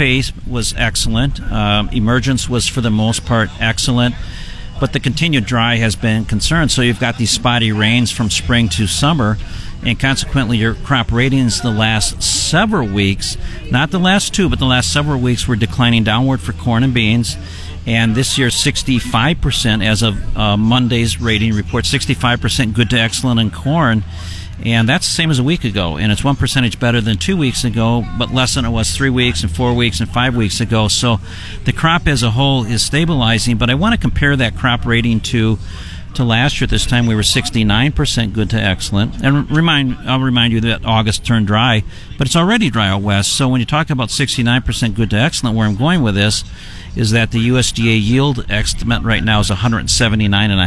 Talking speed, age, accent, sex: 200 wpm, 50-69, American, male